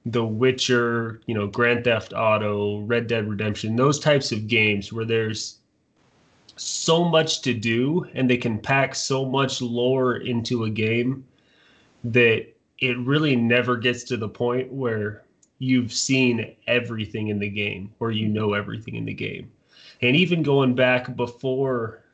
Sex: male